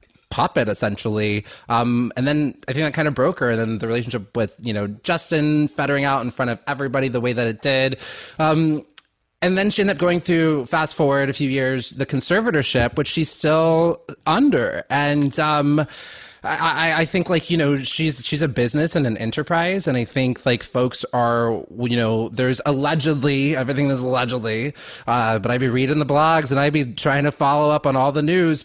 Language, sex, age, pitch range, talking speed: English, male, 20-39, 120-155 Hz, 200 wpm